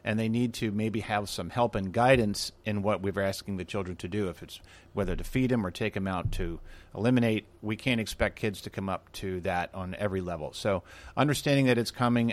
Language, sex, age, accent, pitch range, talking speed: English, male, 50-69, American, 100-120 Hz, 235 wpm